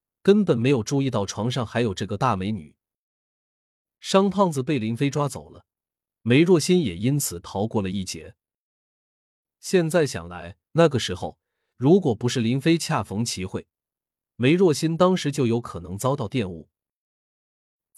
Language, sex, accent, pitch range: Chinese, male, native, 100-150 Hz